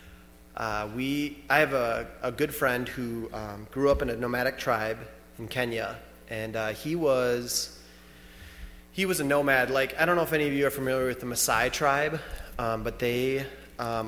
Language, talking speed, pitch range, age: English, 190 wpm, 110-140 Hz, 20-39